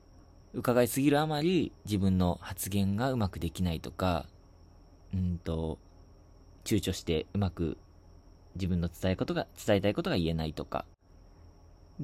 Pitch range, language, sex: 85-120 Hz, Japanese, male